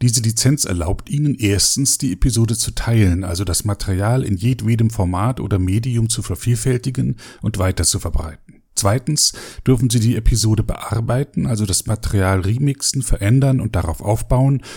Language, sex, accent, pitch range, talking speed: German, male, German, 100-125 Hz, 150 wpm